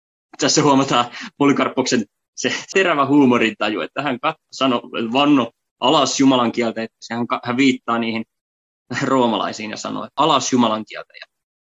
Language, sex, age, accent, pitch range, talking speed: Finnish, male, 20-39, native, 115-135 Hz, 125 wpm